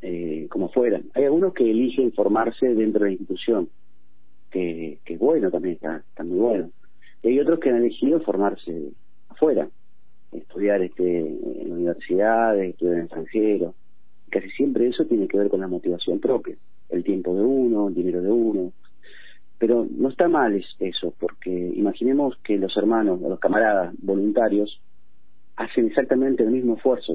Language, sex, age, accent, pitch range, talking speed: Spanish, male, 40-59, Argentinian, 85-115 Hz, 160 wpm